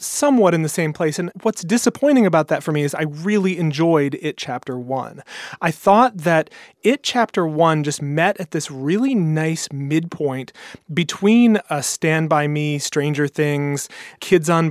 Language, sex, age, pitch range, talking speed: English, male, 30-49, 140-190 Hz, 160 wpm